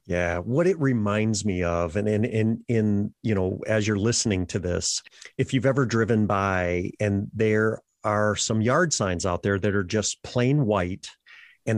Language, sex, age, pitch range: English, male, 40-59, 100-120 Hz